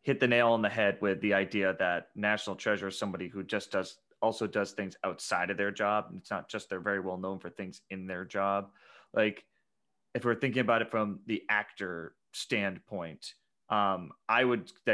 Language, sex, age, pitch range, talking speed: English, male, 30-49, 100-115 Hz, 205 wpm